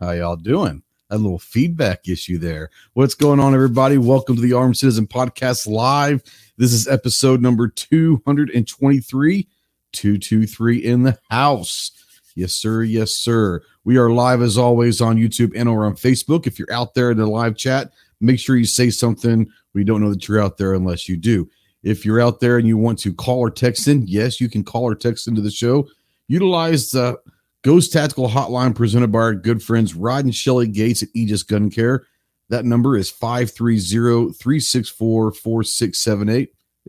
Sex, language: male, English